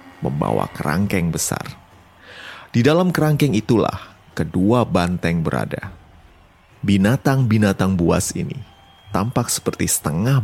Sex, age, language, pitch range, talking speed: male, 30-49, Indonesian, 90-125 Hz, 90 wpm